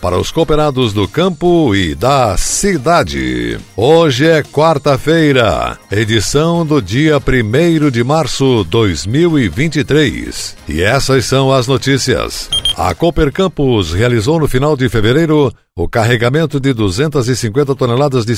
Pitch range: 115-145 Hz